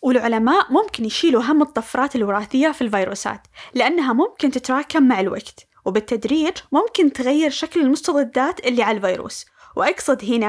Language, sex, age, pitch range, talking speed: Arabic, female, 20-39, 240-325 Hz, 130 wpm